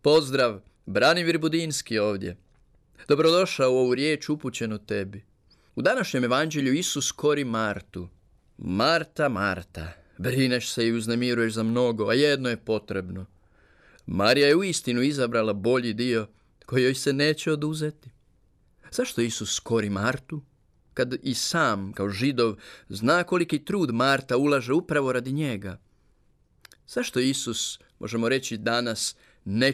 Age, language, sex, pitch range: 30-49, Croatian, male, 105-140 Hz